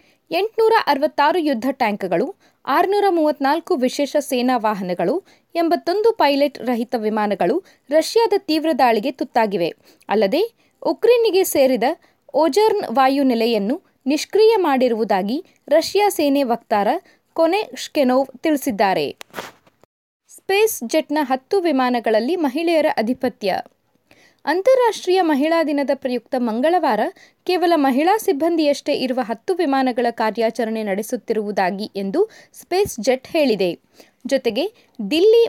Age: 20-39